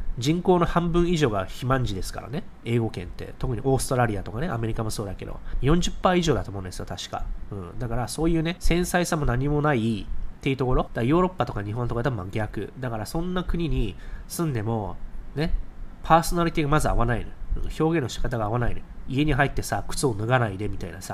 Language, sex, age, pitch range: Japanese, male, 20-39, 100-155 Hz